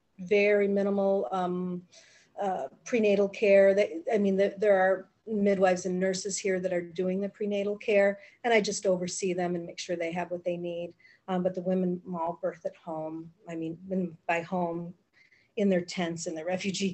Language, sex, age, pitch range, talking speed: English, female, 40-59, 175-195 Hz, 185 wpm